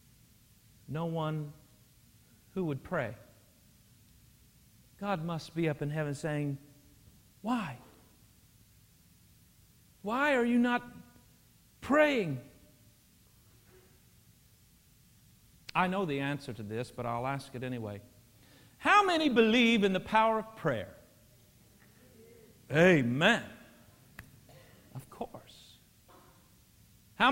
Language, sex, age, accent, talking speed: English, male, 50-69, American, 90 wpm